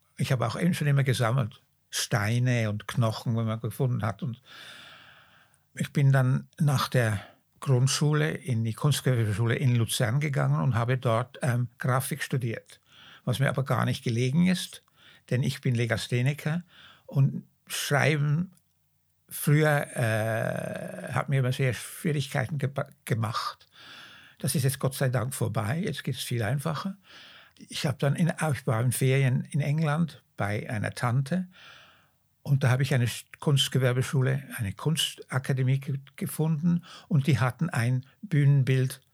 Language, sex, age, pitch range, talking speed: German, male, 60-79, 120-150 Hz, 145 wpm